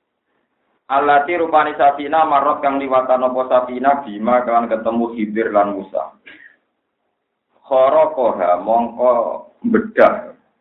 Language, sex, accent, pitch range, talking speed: Indonesian, male, native, 110-135 Hz, 100 wpm